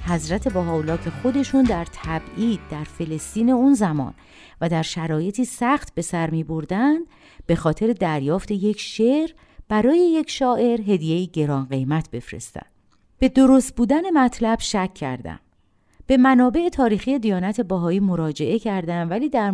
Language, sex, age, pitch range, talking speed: Persian, female, 50-69, 160-250 Hz, 135 wpm